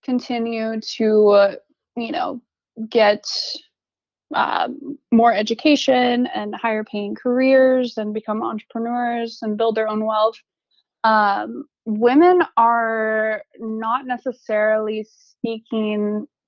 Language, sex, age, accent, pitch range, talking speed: English, female, 20-39, American, 210-245 Hz, 100 wpm